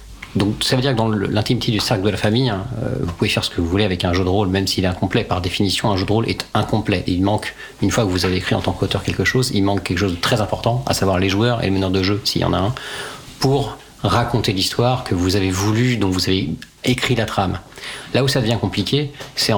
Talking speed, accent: 275 wpm, French